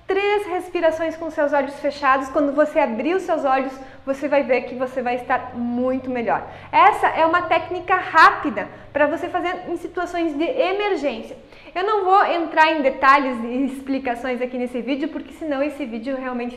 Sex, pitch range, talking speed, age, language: female, 270-345 Hz, 175 wpm, 20-39, English